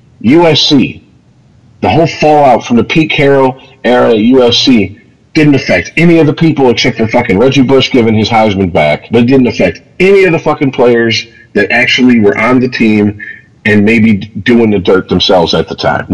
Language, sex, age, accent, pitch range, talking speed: English, male, 50-69, American, 105-130 Hz, 180 wpm